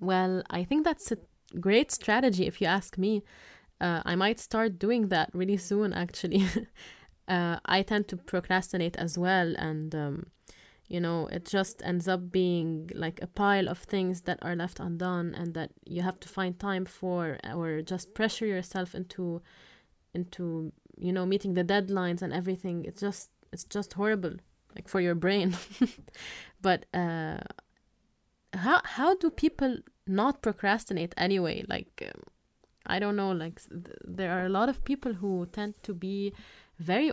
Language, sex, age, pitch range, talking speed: English, female, 20-39, 175-205 Hz, 165 wpm